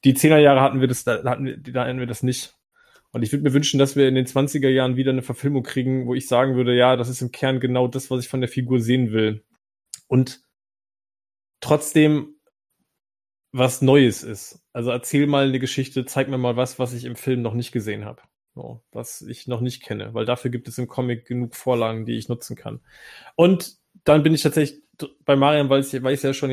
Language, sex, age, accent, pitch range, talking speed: German, male, 20-39, German, 125-150 Hz, 220 wpm